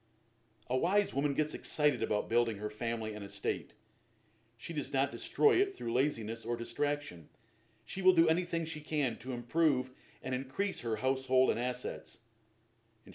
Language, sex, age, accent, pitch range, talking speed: English, male, 50-69, American, 115-155 Hz, 160 wpm